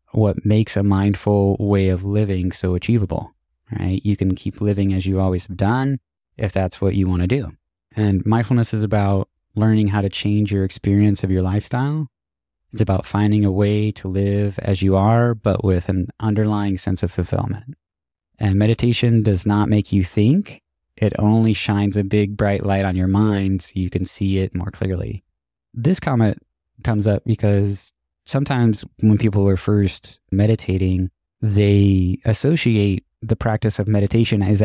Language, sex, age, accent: English, male, 20-39, American